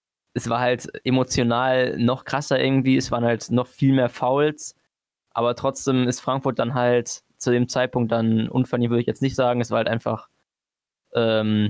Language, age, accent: German, 20-39, German